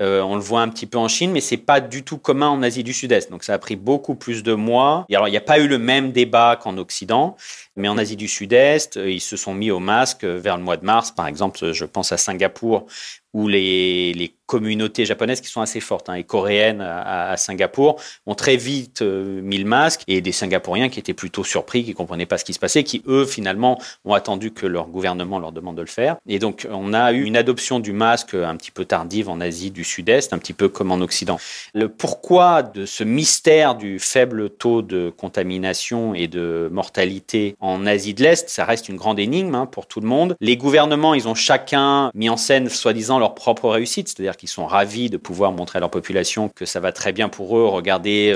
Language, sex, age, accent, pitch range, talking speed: French, male, 40-59, French, 95-130 Hz, 235 wpm